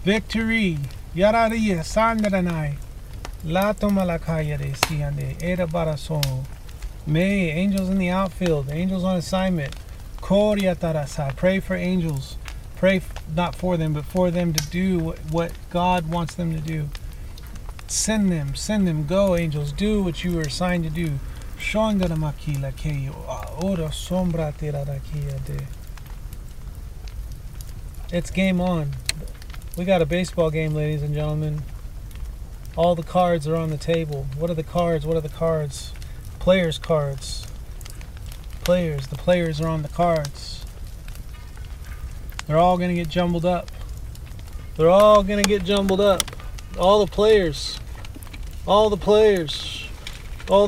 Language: English